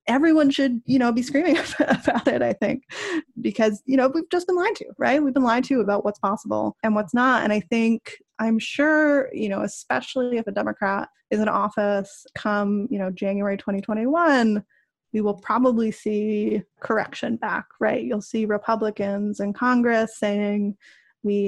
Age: 20-39